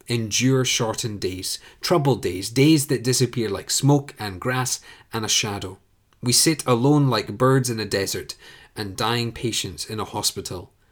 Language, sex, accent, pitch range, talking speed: English, male, British, 105-130 Hz, 160 wpm